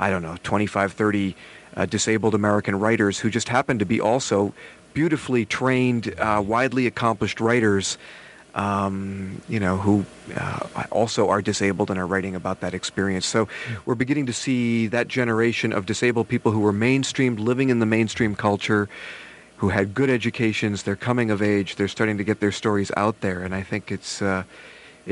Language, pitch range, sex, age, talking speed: English, 95-115 Hz, male, 40-59, 175 wpm